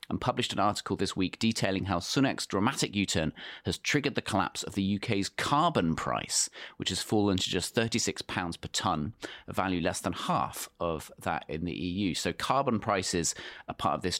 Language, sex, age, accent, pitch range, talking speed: English, male, 30-49, British, 90-115 Hz, 190 wpm